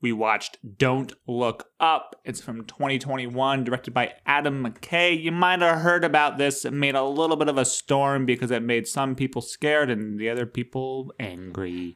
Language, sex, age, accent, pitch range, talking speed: English, male, 30-49, American, 125-180 Hz, 185 wpm